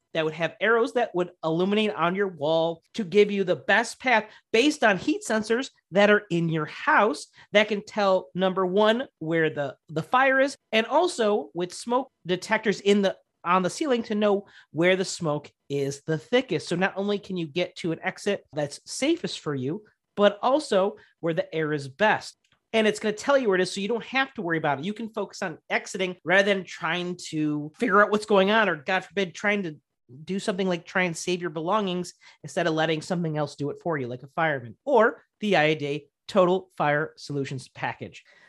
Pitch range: 165-220 Hz